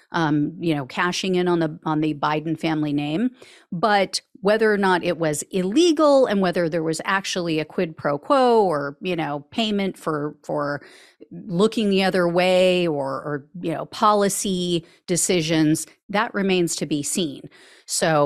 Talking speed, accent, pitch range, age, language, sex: 165 wpm, American, 170-235 Hz, 40-59, English, female